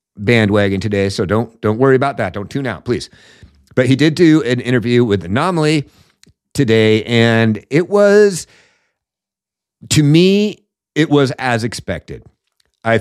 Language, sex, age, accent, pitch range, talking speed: English, male, 50-69, American, 105-130 Hz, 145 wpm